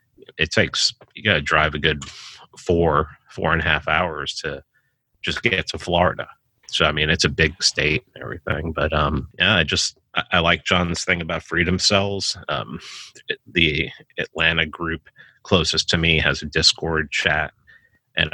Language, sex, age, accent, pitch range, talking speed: English, male, 30-49, American, 75-95 Hz, 170 wpm